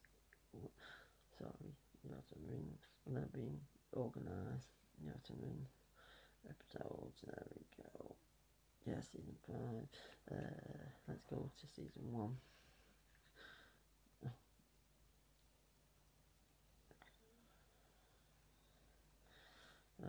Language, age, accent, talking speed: English, 40-59, British, 65 wpm